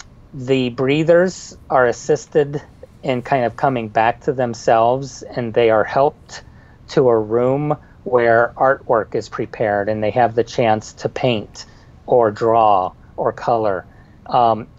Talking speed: 140 wpm